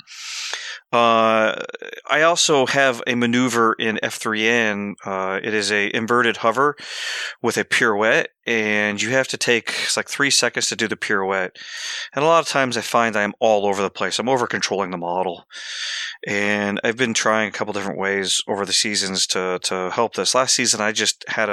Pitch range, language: 105-130 Hz, English